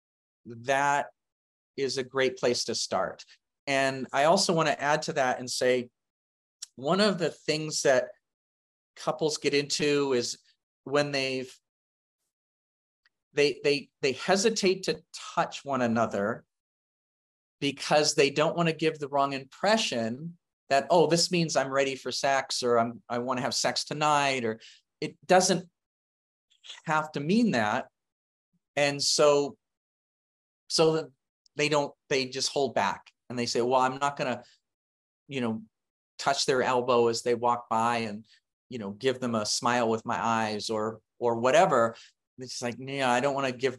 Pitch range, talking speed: 120-145 Hz, 160 wpm